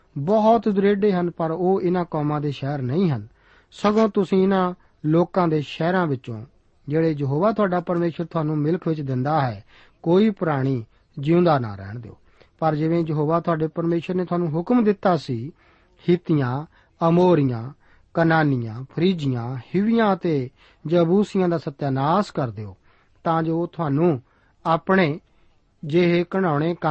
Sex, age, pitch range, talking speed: male, 40-59, 145-185 Hz, 105 wpm